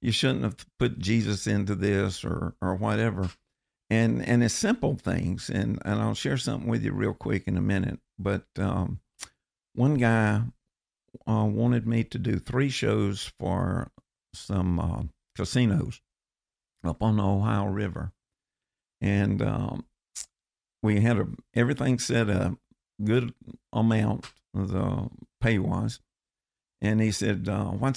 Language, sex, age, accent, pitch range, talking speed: English, male, 50-69, American, 95-120 Hz, 140 wpm